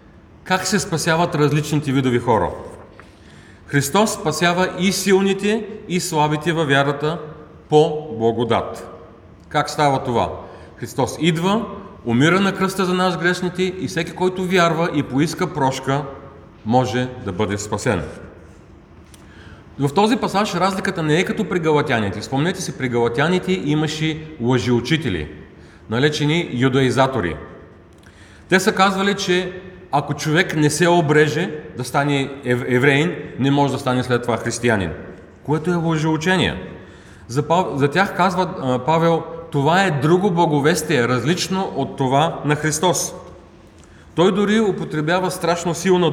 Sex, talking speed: male, 125 wpm